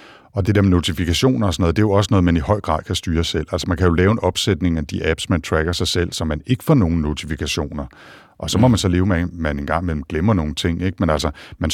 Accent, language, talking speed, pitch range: native, Danish, 295 wpm, 80-100 Hz